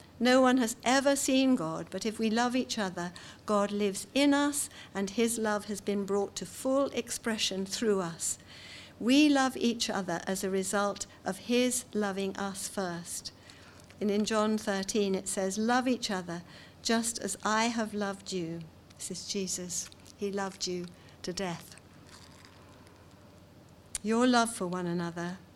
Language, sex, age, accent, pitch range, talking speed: English, female, 50-69, British, 180-220 Hz, 155 wpm